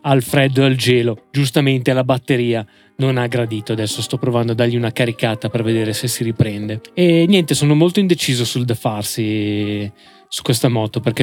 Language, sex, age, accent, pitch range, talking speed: Italian, male, 20-39, native, 120-155 Hz, 185 wpm